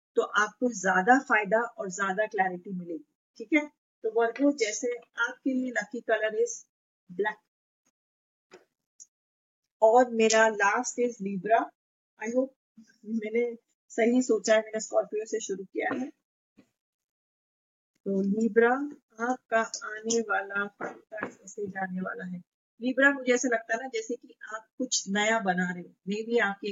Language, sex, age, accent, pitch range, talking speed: Hindi, female, 30-49, native, 195-240 Hz, 135 wpm